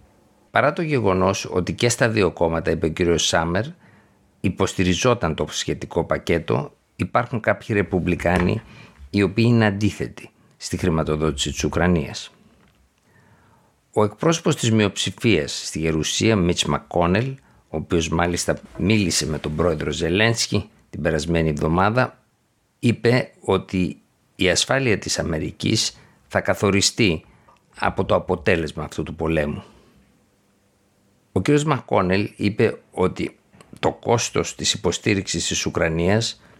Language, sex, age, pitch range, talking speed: Greek, male, 50-69, 85-110 Hz, 115 wpm